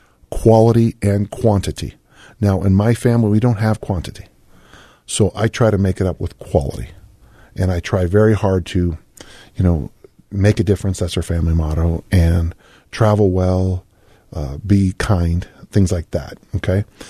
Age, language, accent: 40-59, English, American